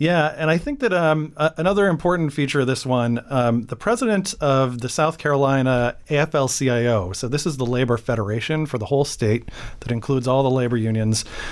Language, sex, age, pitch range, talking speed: English, male, 40-59, 125-155 Hz, 195 wpm